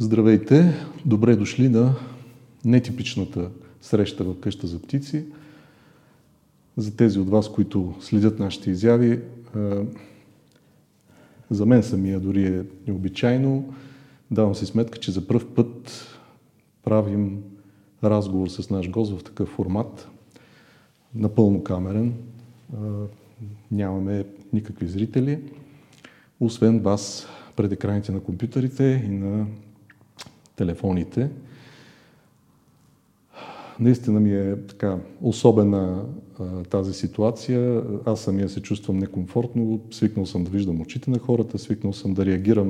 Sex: male